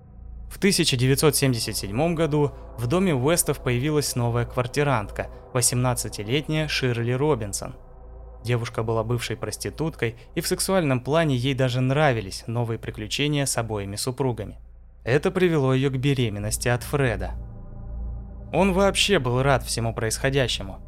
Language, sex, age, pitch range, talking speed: Russian, male, 20-39, 110-145 Hz, 120 wpm